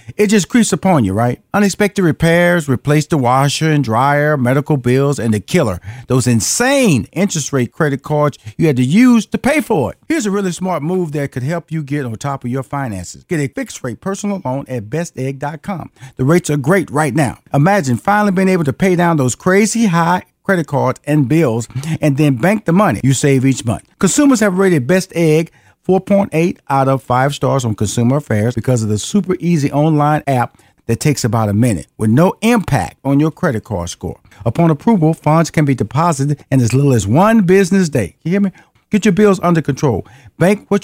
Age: 40-59